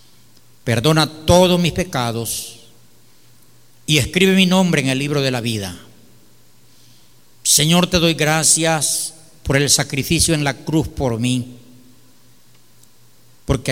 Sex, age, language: male, 50-69, Spanish